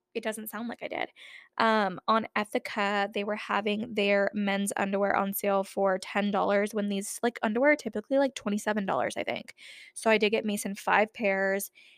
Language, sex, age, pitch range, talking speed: English, female, 10-29, 200-235 Hz, 195 wpm